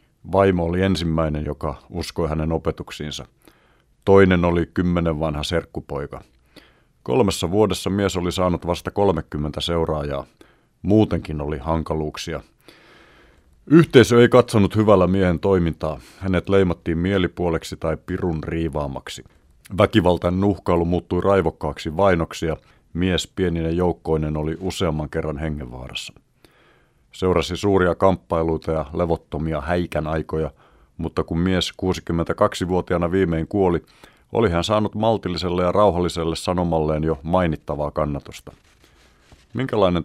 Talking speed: 110 wpm